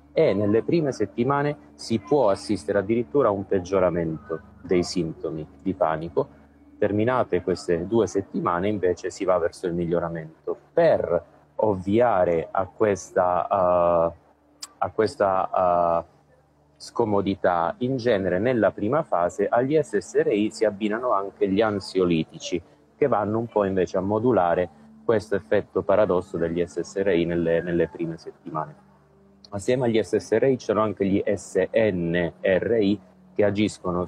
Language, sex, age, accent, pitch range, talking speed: Italian, male, 30-49, native, 85-105 Hz, 120 wpm